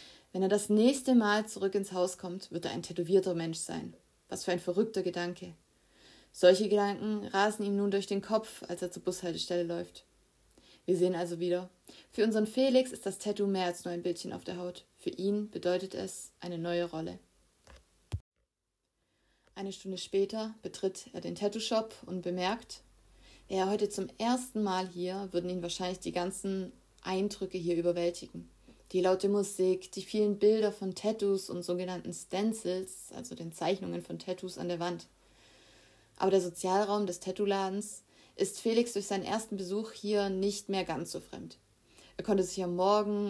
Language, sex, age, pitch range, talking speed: German, female, 20-39, 180-205 Hz, 170 wpm